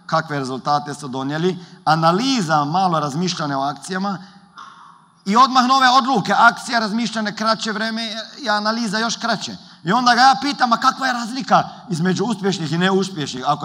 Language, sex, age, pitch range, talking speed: Croatian, male, 40-59, 175-235 Hz, 155 wpm